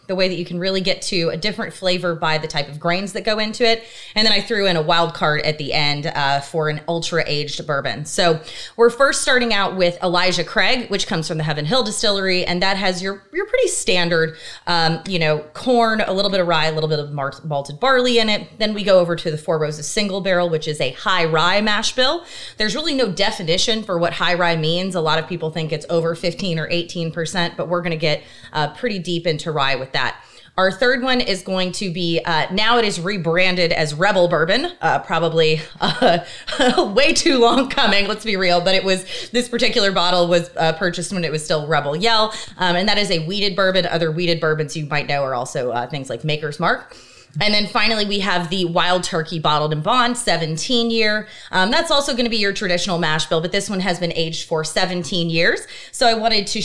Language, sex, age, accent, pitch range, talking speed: English, female, 30-49, American, 160-210 Hz, 235 wpm